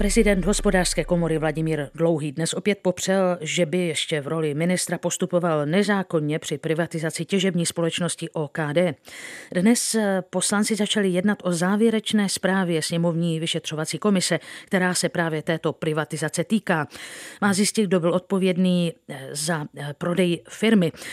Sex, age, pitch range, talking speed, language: female, 50-69, 165-205 Hz, 130 wpm, Czech